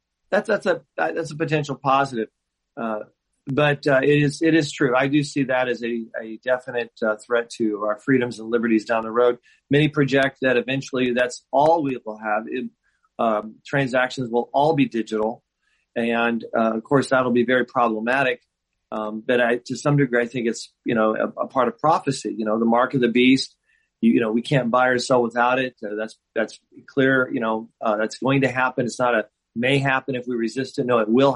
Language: English